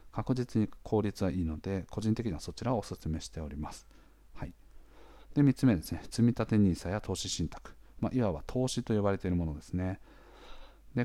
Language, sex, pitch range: Japanese, male, 80-110 Hz